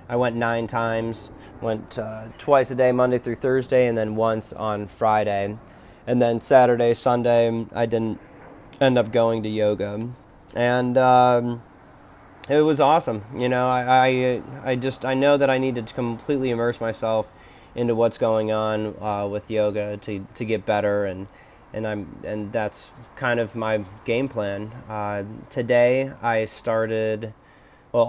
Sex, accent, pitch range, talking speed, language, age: male, American, 110-125 Hz, 160 wpm, English, 20-39